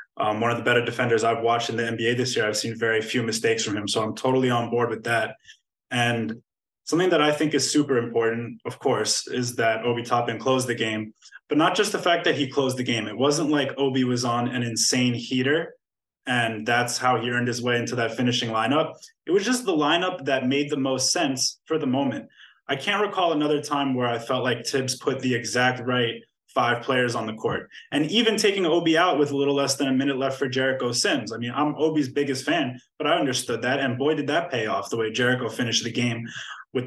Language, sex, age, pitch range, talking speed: English, male, 20-39, 115-140 Hz, 235 wpm